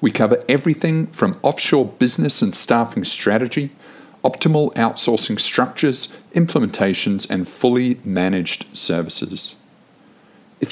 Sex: male